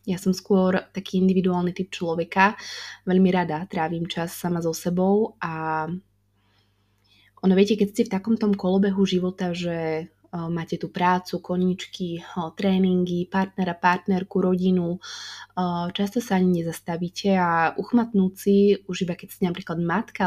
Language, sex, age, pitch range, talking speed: Slovak, female, 20-39, 170-190 Hz, 130 wpm